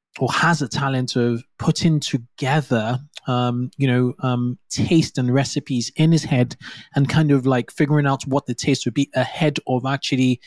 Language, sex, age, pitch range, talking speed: English, male, 20-39, 125-145 Hz, 180 wpm